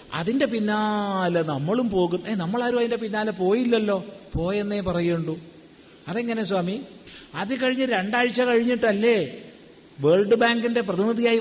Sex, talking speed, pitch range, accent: male, 100 wpm, 185-250 Hz, native